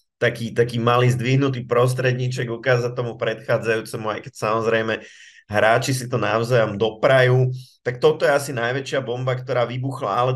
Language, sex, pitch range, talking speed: Slovak, male, 110-130 Hz, 145 wpm